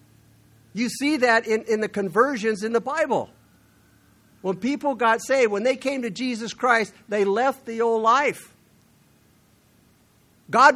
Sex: male